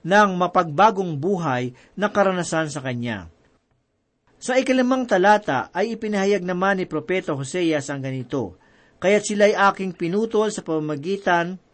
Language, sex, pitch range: Filipino, male, 145-200 Hz